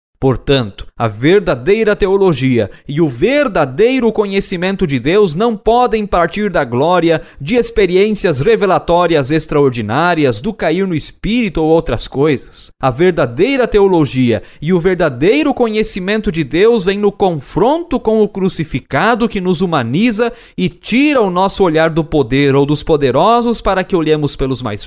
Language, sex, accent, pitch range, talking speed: Portuguese, male, Brazilian, 150-210 Hz, 140 wpm